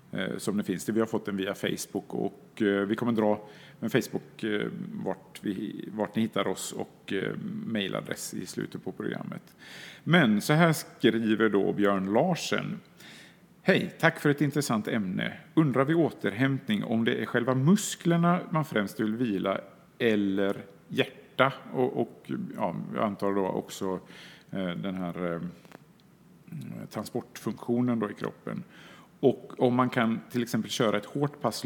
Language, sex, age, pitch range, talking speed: Swedish, male, 50-69, 105-145 Hz, 145 wpm